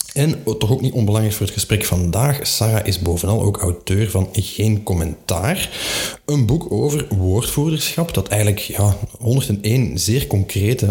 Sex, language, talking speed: male, Dutch, 150 wpm